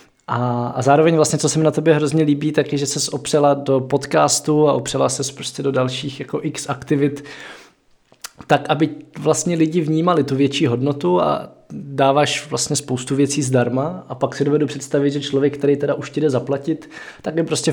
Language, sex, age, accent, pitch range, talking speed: Czech, male, 20-39, native, 135-155 Hz, 195 wpm